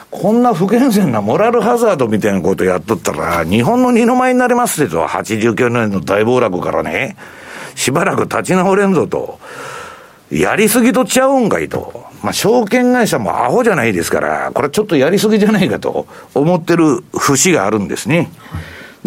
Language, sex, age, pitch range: Japanese, male, 60-79, 140-220 Hz